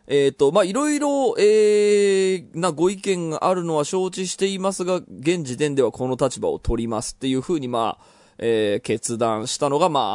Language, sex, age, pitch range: Japanese, male, 20-39, 120-195 Hz